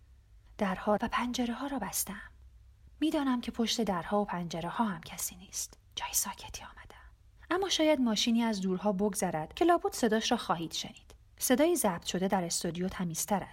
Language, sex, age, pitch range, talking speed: Persian, female, 30-49, 185-245 Hz, 160 wpm